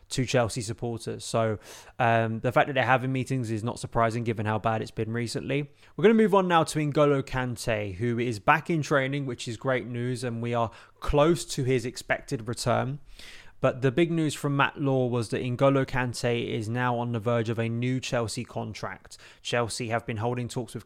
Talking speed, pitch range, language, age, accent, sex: 205 wpm, 115-130 Hz, English, 20-39, British, male